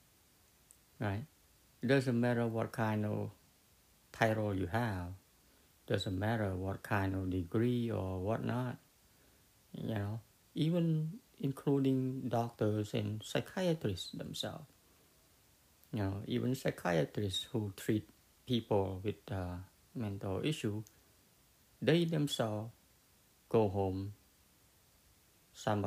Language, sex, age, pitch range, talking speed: English, male, 60-79, 95-125 Hz, 100 wpm